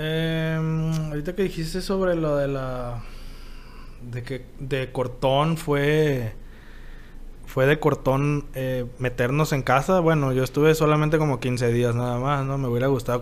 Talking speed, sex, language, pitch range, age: 150 wpm, male, Spanish, 130-170 Hz, 20-39